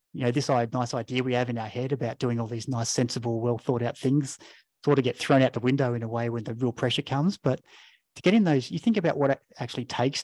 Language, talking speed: English, 265 wpm